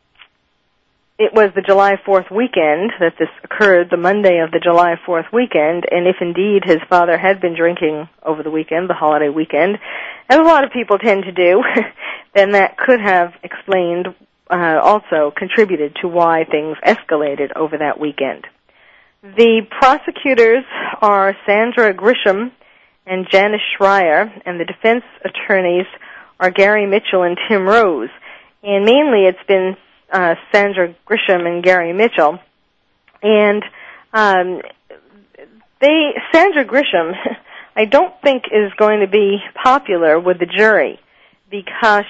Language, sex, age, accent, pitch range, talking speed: English, female, 40-59, American, 175-225 Hz, 140 wpm